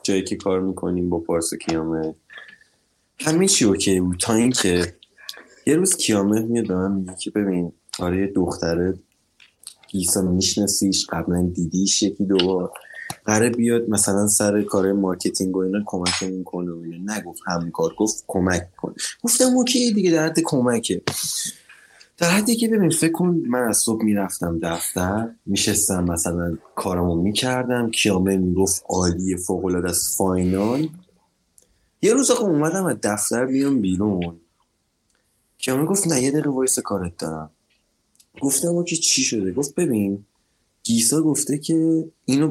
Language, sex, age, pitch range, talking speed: Persian, male, 20-39, 90-130 Hz, 130 wpm